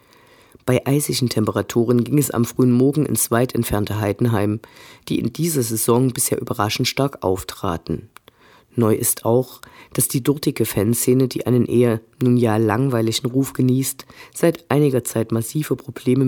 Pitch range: 115-135 Hz